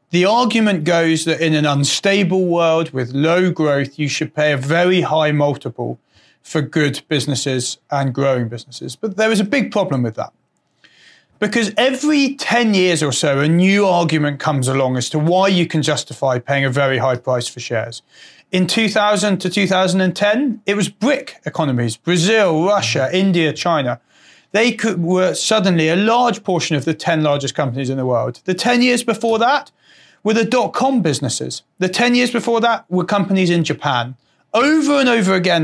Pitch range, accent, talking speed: 145-205 Hz, British, 175 wpm